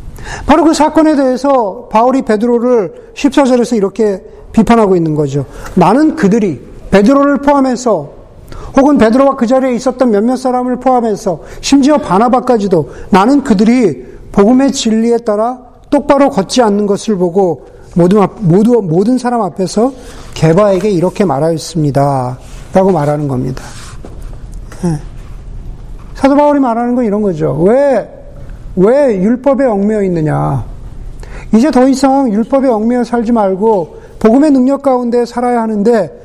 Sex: male